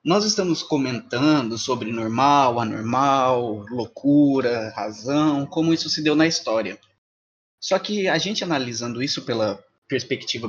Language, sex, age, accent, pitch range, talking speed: Portuguese, male, 20-39, Brazilian, 115-155 Hz, 125 wpm